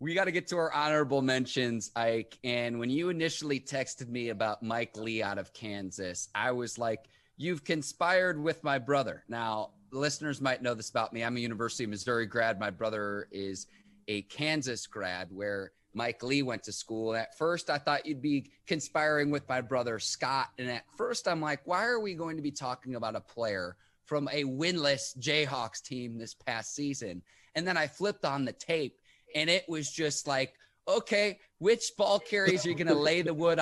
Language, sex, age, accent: English, male, 30-49, American